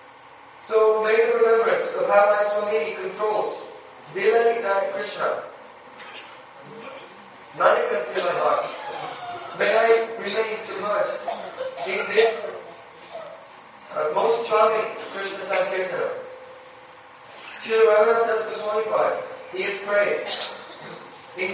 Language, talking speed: Hindi, 90 wpm